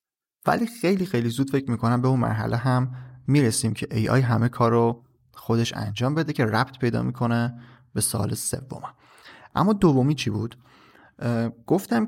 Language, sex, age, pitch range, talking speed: Persian, male, 30-49, 115-140 Hz, 155 wpm